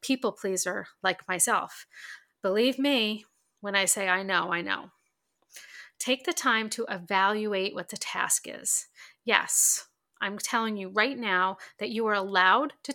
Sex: female